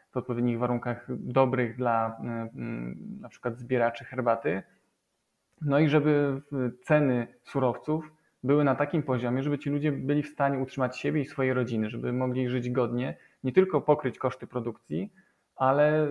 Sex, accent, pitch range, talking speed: male, native, 125-140 Hz, 145 wpm